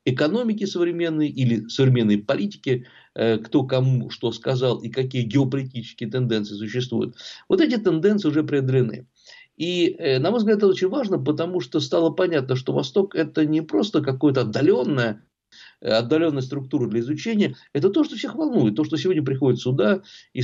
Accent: native